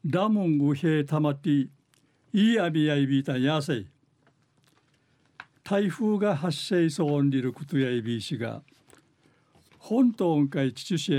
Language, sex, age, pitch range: Japanese, male, 60-79, 145-175 Hz